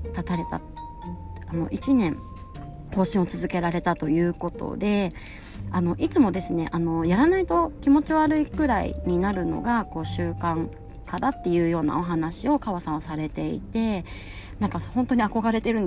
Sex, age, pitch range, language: female, 20-39, 165-240 Hz, Japanese